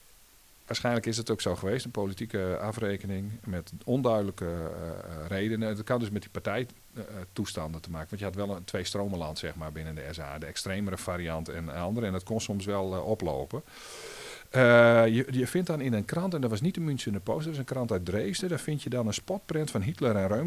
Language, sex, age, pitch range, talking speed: Dutch, male, 50-69, 85-115 Hz, 225 wpm